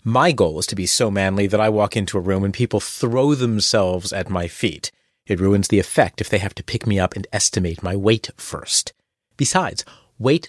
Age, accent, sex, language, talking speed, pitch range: 30-49, American, male, English, 215 wpm, 100-140 Hz